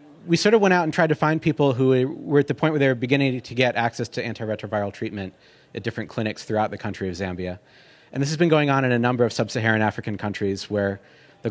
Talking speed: 250 wpm